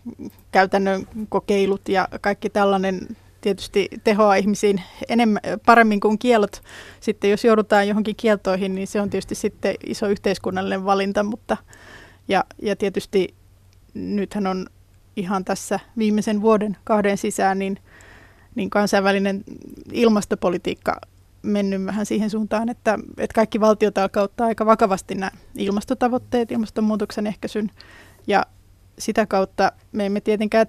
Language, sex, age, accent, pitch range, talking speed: Finnish, female, 20-39, native, 195-220 Hz, 120 wpm